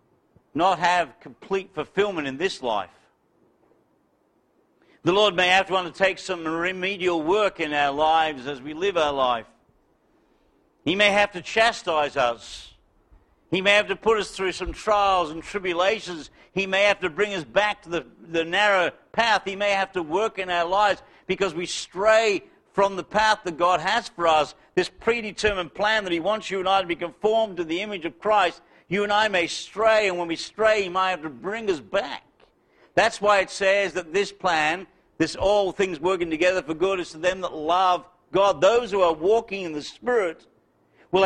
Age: 60-79